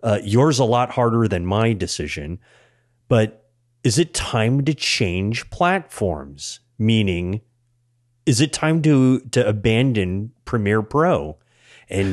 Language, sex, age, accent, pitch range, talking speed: English, male, 30-49, American, 95-120 Hz, 125 wpm